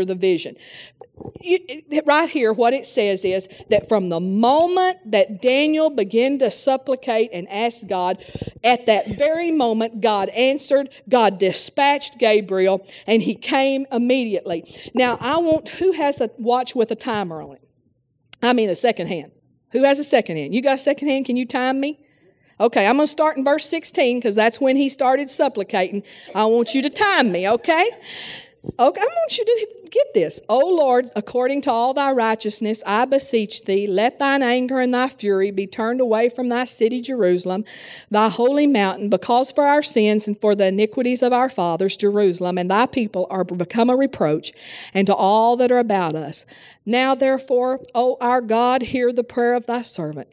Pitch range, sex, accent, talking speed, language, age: 200-265 Hz, female, American, 185 wpm, English, 50-69